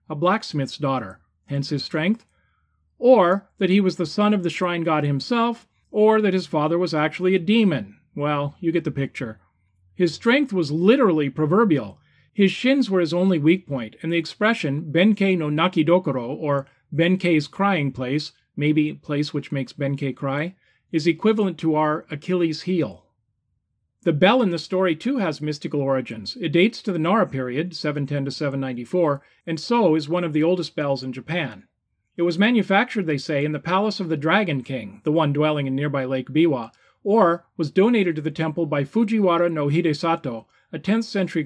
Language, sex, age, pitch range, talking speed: English, male, 40-59, 140-185 Hz, 175 wpm